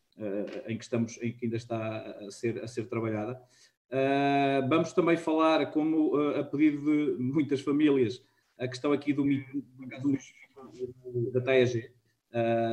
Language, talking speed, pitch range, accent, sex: Portuguese, 115 wpm, 120-140 Hz, Portuguese, male